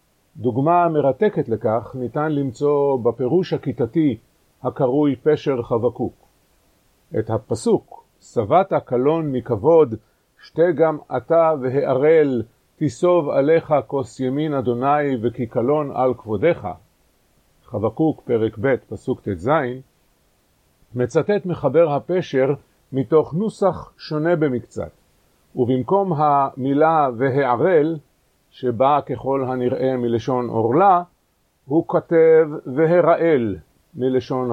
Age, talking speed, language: 50-69, 90 wpm, Hebrew